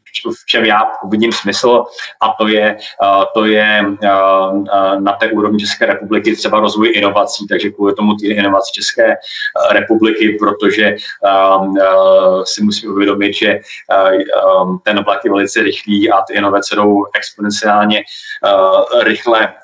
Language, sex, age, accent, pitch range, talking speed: Czech, male, 30-49, native, 100-110 Hz, 125 wpm